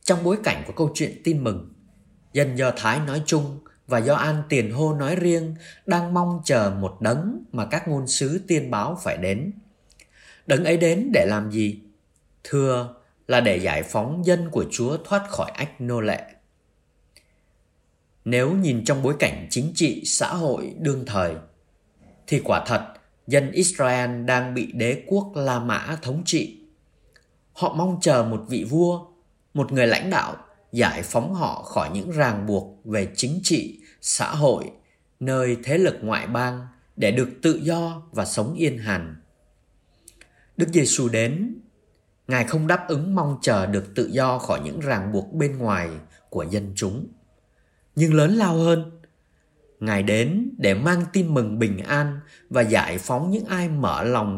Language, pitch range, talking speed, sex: Vietnamese, 105-165 Hz, 165 wpm, male